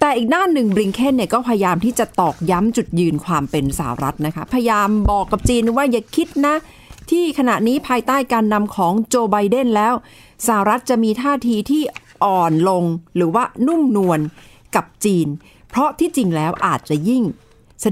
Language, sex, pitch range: Thai, female, 165-230 Hz